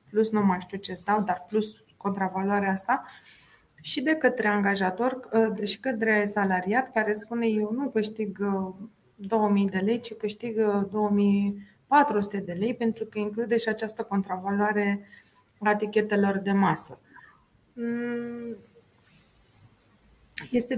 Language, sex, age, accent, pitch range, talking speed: Romanian, female, 20-39, native, 195-225 Hz, 120 wpm